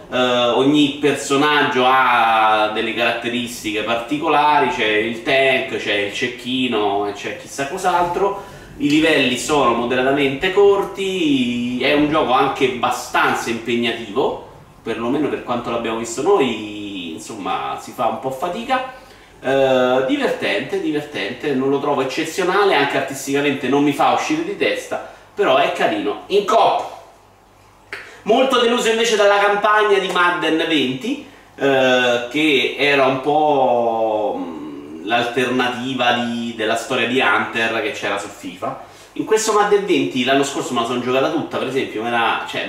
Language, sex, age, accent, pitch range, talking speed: Italian, male, 30-49, native, 120-160 Hz, 145 wpm